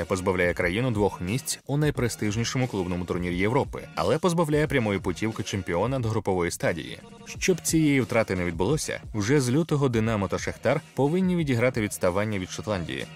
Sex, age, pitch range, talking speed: male, 20-39, 100-145 Hz, 150 wpm